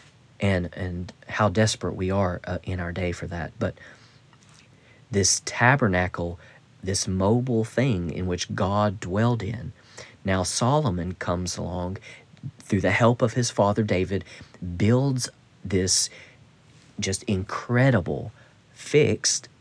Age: 40-59